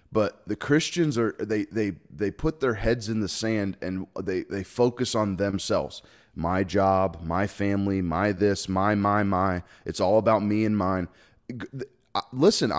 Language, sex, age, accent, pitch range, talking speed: English, male, 20-39, American, 100-125 Hz, 165 wpm